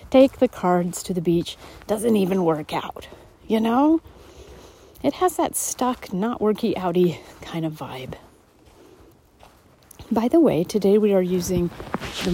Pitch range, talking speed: 155-220 Hz, 140 wpm